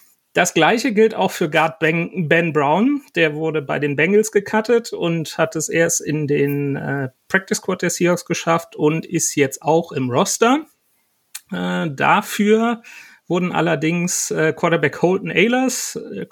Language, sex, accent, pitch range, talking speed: German, male, German, 145-190 Hz, 150 wpm